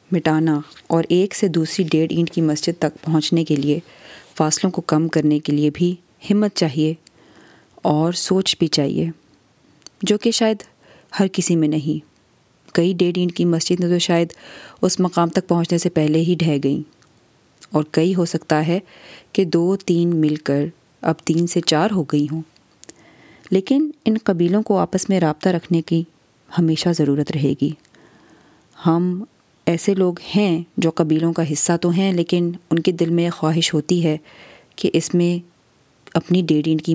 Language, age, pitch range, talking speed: Urdu, 30-49, 155-180 Hz, 165 wpm